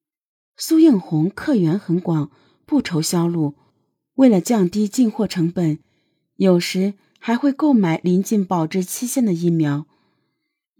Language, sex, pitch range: Chinese, female, 170-250 Hz